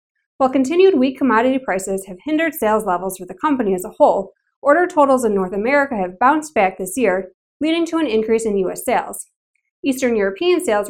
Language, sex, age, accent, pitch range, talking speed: English, female, 20-39, American, 200-295 Hz, 195 wpm